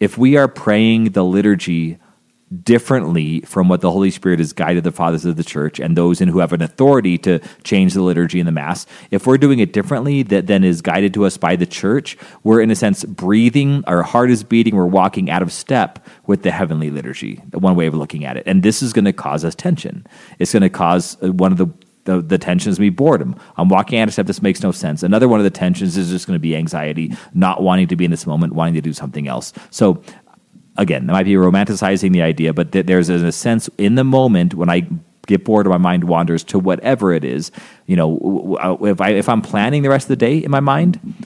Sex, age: male, 30-49